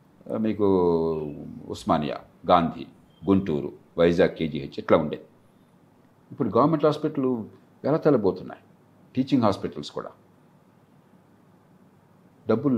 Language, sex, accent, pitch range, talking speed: Telugu, male, native, 100-145 Hz, 80 wpm